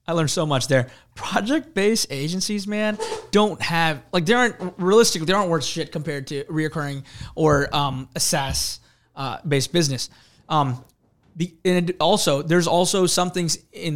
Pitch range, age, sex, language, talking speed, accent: 140-175 Hz, 20-39, male, English, 150 wpm, American